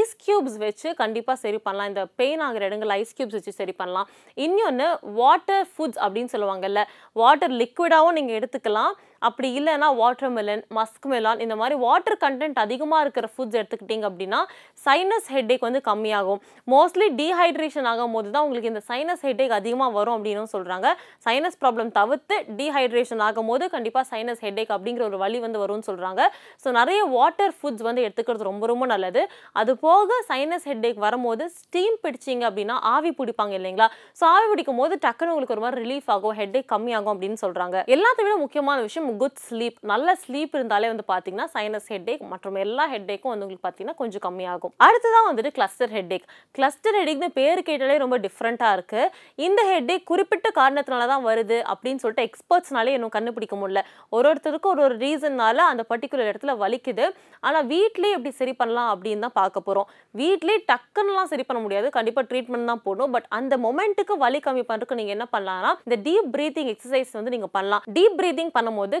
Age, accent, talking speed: 20-39, native, 90 wpm